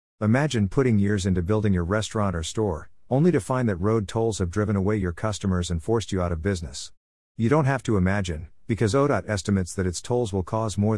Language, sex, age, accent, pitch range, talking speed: English, male, 50-69, American, 90-115 Hz, 220 wpm